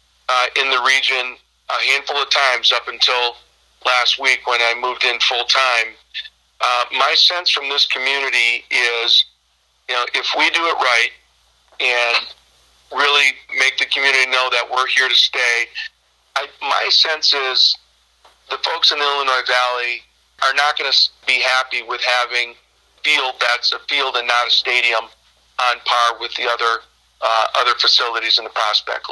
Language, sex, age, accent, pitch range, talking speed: English, male, 40-59, American, 120-130 Hz, 165 wpm